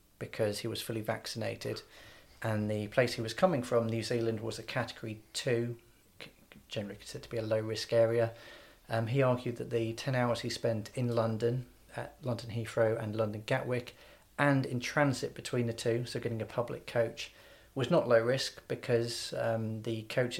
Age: 30-49